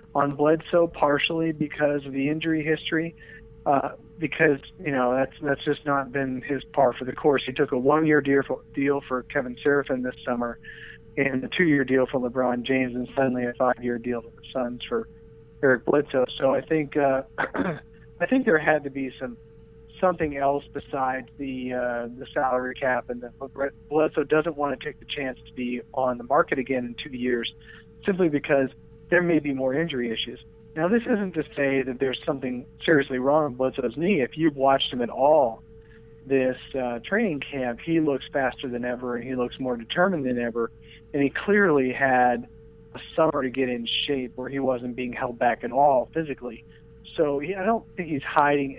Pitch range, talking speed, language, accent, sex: 125-150 Hz, 195 wpm, English, American, male